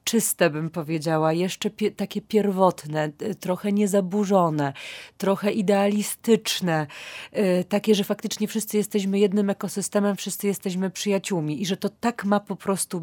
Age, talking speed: 30-49, 125 wpm